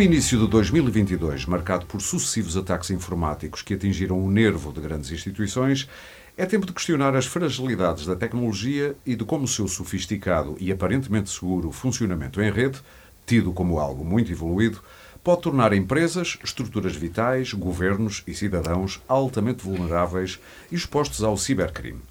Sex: male